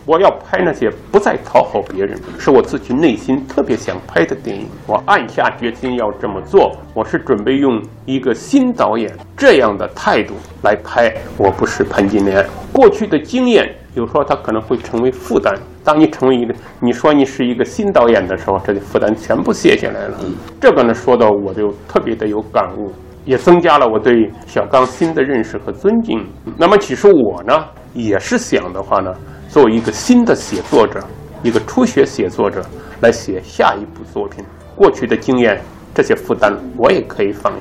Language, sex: Chinese, male